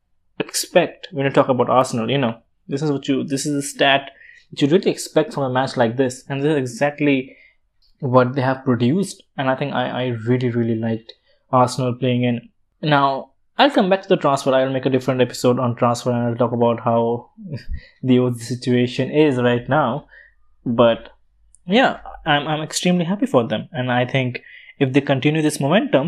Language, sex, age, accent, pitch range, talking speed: English, male, 20-39, Indian, 120-145 Hz, 195 wpm